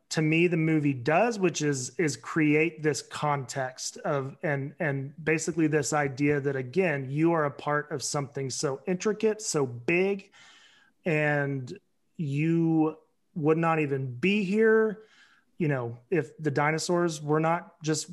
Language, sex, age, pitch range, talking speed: English, male, 30-49, 140-190 Hz, 145 wpm